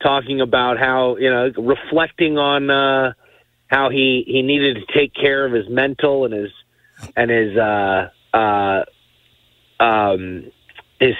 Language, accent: English, American